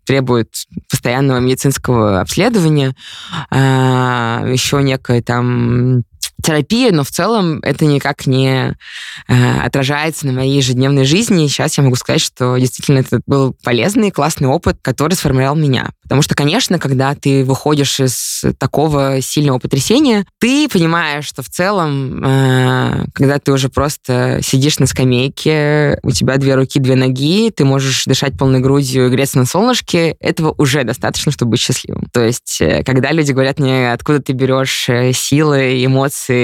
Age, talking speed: 20-39, 150 wpm